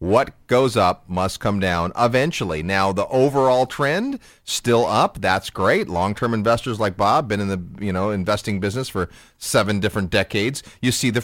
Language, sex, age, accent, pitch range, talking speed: English, male, 30-49, American, 90-120 Hz, 175 wpm